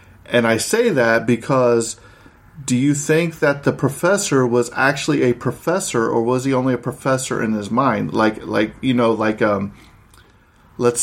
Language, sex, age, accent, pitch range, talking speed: English, male, 40-59, American, 110-130 Hz, 170 wpm